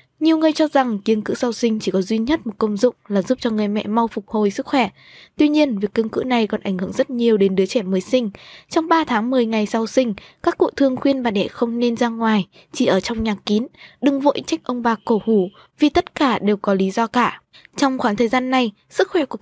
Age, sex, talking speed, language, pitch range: 10-29, female, 265 wpm, Vietnamese, 215-265 Hz